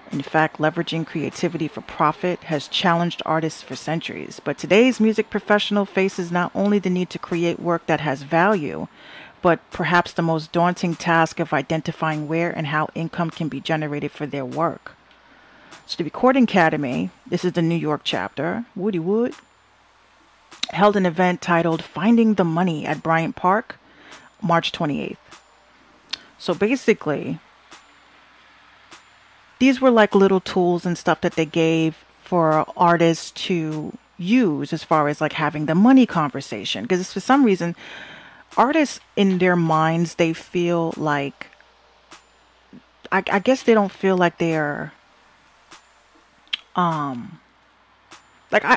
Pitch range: 160-195 Hz